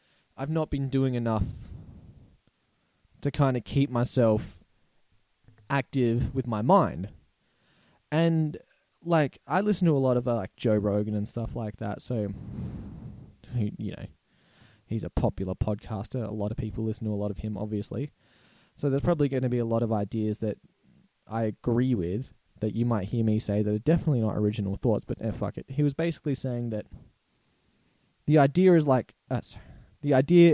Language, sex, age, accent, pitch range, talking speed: English, male, 20-39, Australian, 110-155 Hz, 180 wpm